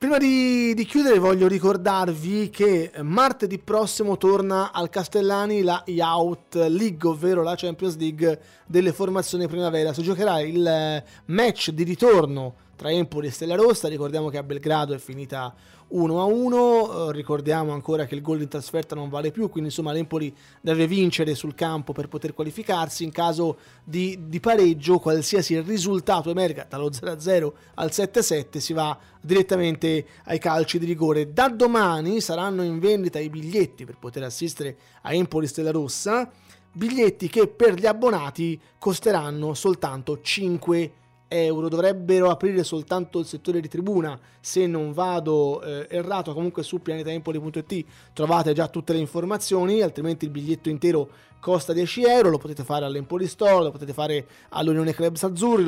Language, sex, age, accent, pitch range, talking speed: Italian, male, 20-39, native, 155-185 Hz, 150 wpm